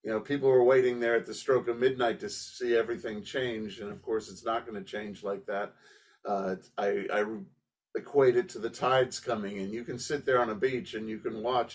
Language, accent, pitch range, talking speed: English, American, 110-130 Hz, 235 wpm